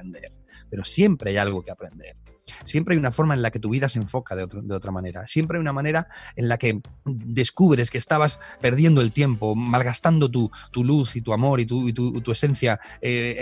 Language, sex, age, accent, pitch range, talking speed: Spanish, male, 30-49, Spanish, 110-140 Hz, 220 wpm